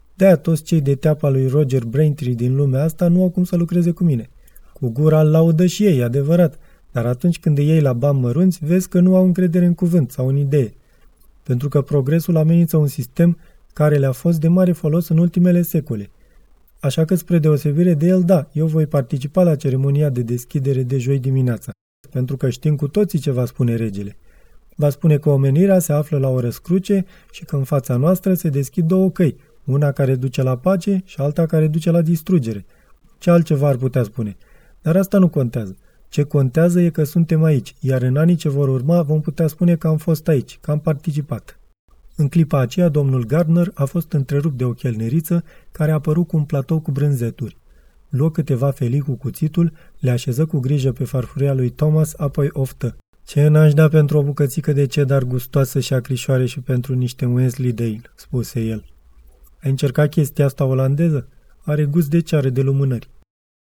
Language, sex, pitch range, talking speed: Romanian, male, 130-165 Hz, 195 wpm